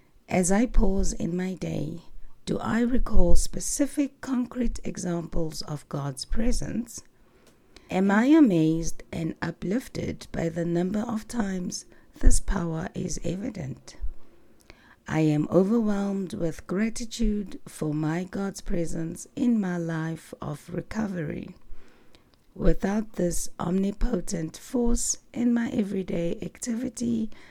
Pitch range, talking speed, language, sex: 165-215 Hz, 110 wpm, English, female